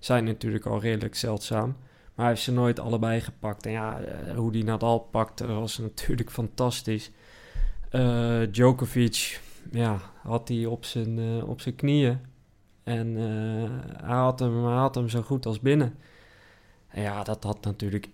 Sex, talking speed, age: male, 160 wpm, 20-39